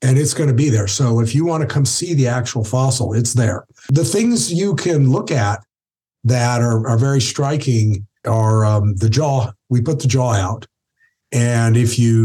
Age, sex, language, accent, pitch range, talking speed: 50-69, male, English, American, 105-125 Hz, 200 wpm